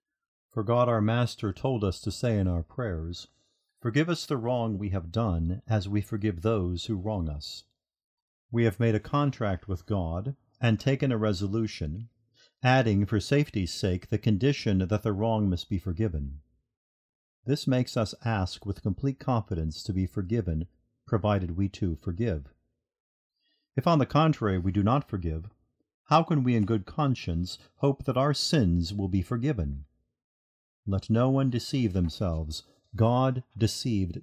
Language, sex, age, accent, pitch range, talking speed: English, male, 40-59, American, 95-125 Hz, 160 wpm